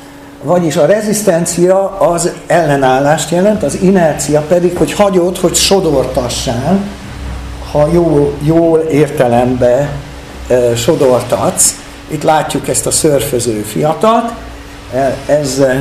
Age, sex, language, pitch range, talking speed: 60-79, male, Hungarian, 130-175 Hz, 95 wpm